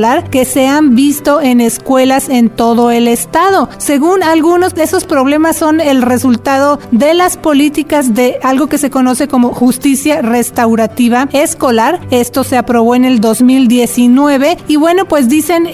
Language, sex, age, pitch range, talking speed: Spanish, female, 40-59, 245-295 Hz, 150 wpm